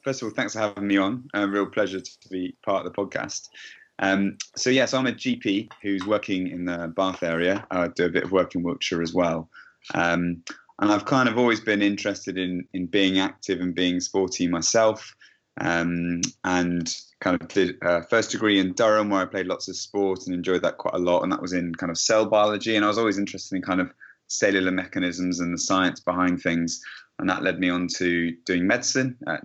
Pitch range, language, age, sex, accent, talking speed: 90-105 Hz, English, 20-39, male, British, 225 wpm